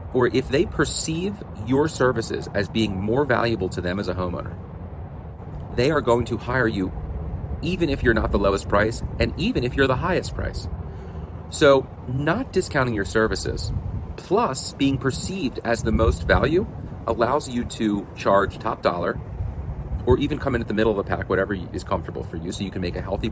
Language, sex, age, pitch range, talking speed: English, male, 40-59, 85-115 Hz, 190 wpm